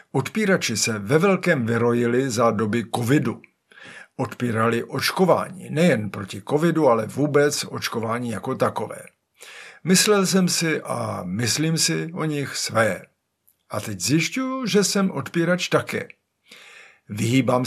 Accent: native